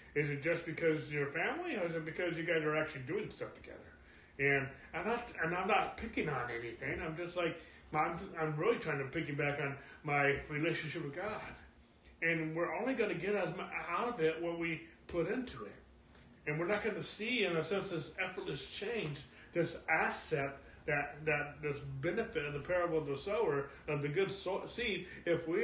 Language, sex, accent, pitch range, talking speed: English, male, American, 140-175 Hz, 200 wpm